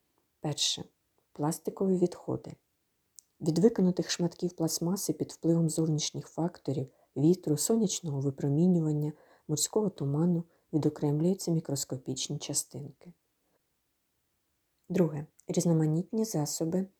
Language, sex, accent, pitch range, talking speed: Ukrainian, female, native, 145-170 Hz, 80 wpm